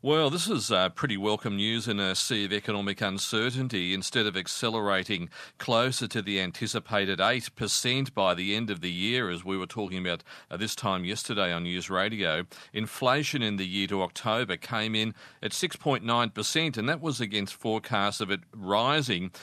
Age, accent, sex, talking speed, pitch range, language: 40-59, Australian, male, 190 wpm, 100-120 Hz, English